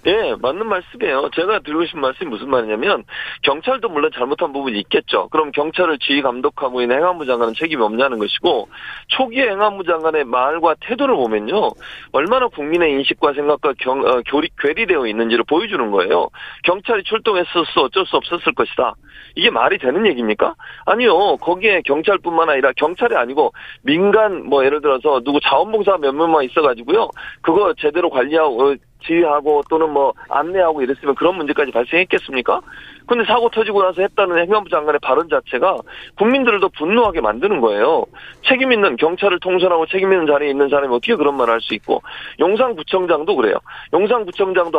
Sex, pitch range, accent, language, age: male, 150-240 Hz, native, Korean, 40-59